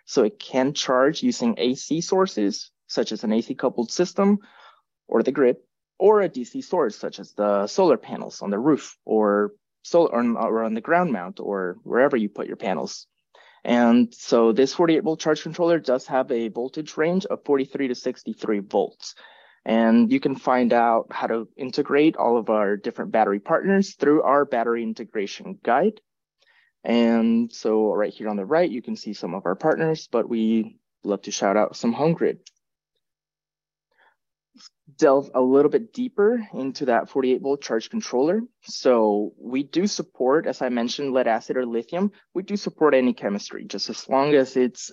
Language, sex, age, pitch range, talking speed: English, male, 20-39, 115-170 Hz, 175 wpm